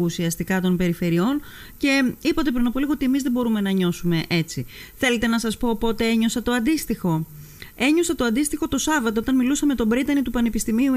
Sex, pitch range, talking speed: female, 190-265 Hz, 190 wpm